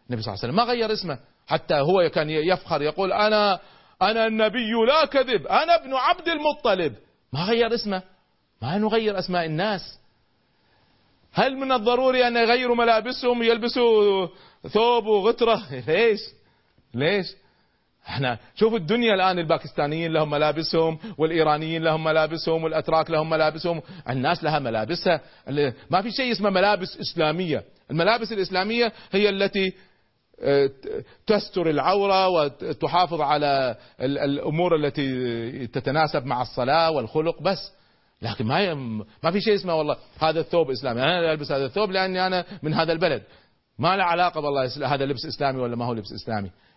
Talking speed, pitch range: 135 wpm, 145-210 Hz